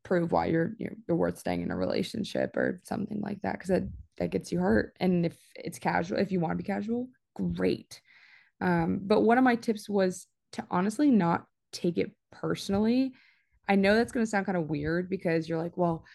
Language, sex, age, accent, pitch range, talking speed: English, female, 20-39, American, 165-205 Hz, 210 wpm